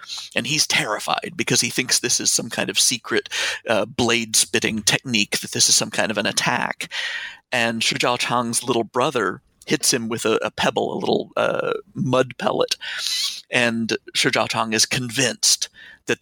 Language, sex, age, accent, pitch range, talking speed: English, male, 40-59, American, 115-160 Hz, 170 wpm